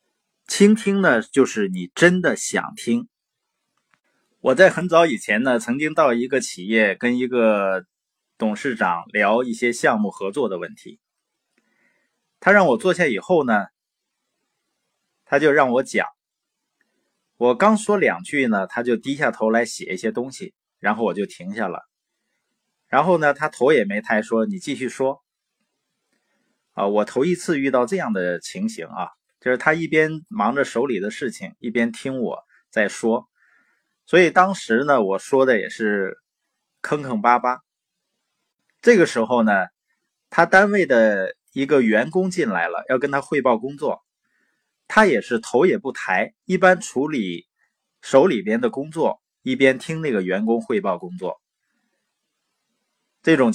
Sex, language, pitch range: male, Chinese, 115-185 Hz